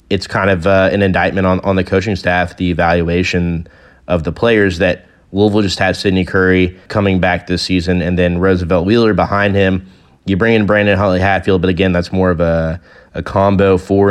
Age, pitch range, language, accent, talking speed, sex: 20-39, 90-100 Hz, English, American, 200 wpm, male